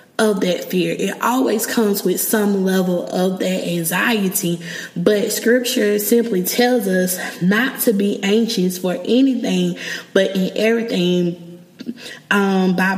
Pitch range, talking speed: 180-220 Hz, 130 wpm